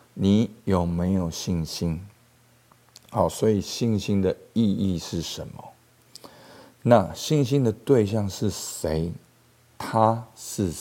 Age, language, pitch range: 50-69, Chinese, 90-110 Hz